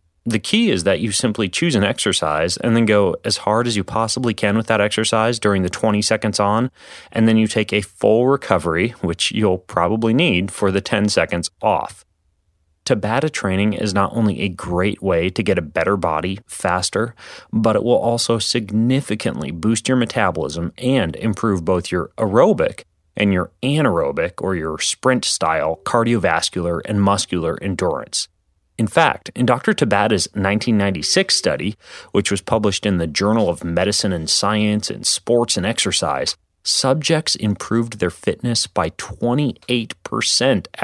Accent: American